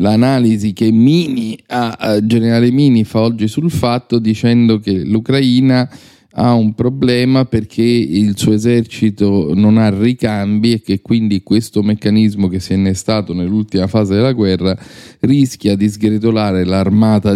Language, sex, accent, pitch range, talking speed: Italian, male, native, 95-125 Hz, 130 wpm